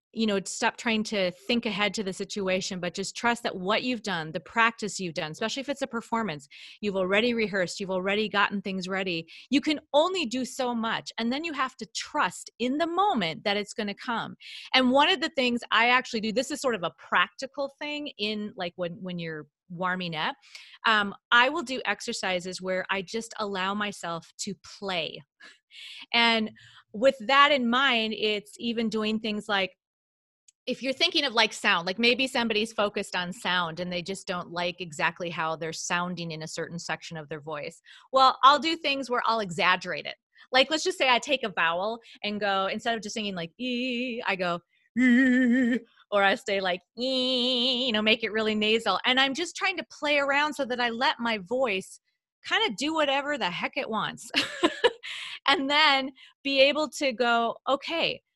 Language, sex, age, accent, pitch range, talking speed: English, female, 30-49, American, 190-260 Hz, 195 wpm